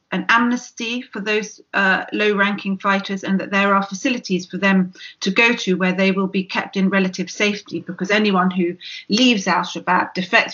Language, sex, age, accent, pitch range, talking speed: English, female, 40-59, British, 180-205 Hz, 180 wpm